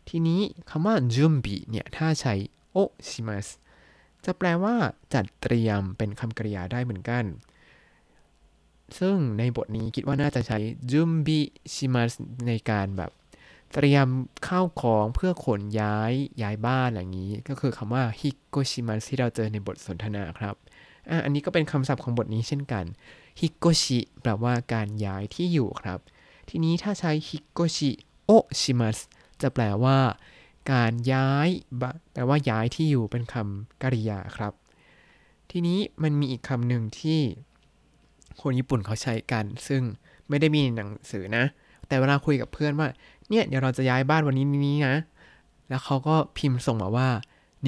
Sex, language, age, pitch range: male, Thai, 20-39, 110-145 Hz